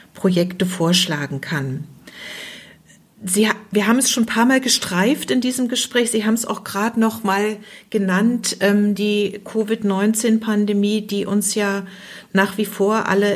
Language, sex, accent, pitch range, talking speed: German, female, German, 180-210 Hz, 140 wpm